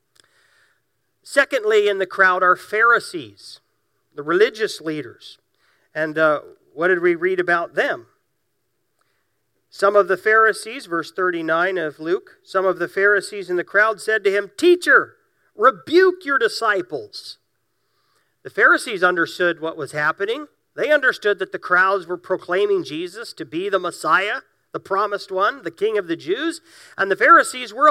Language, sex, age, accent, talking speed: English, male, 50-69, American, 150 wpm